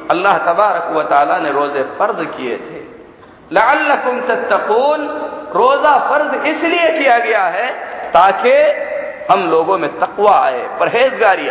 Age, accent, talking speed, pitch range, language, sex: 50-69, native, 105 wpm, 195-285 Hz, Hindi, male